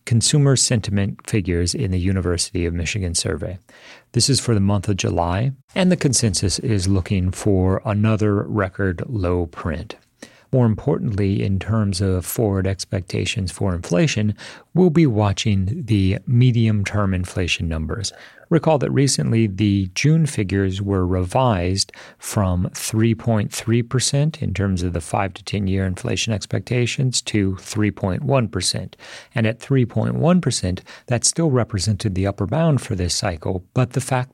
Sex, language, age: male, English, 40-59